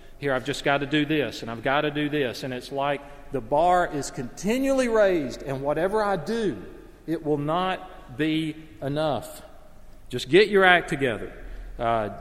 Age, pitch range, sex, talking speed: 40-59, 120-165 Hz, male, 175 wpm